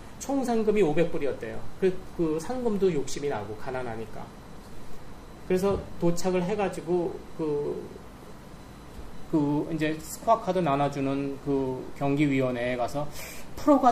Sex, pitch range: male, 140-200 Hz